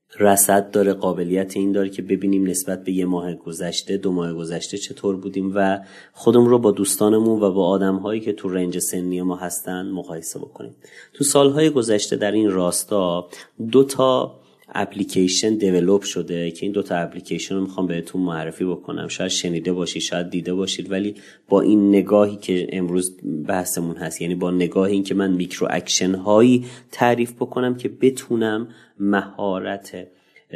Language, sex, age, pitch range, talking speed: Persian, male, 30-49, 95-115 Hz, 160 wpm